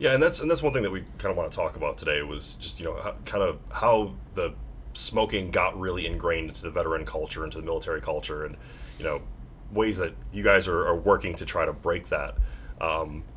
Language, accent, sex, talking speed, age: English, American, male, 240 wpm, 30-49